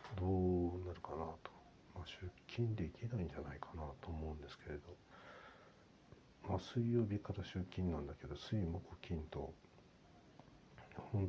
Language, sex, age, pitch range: Japanese, male, 60-79, 80-105 Hz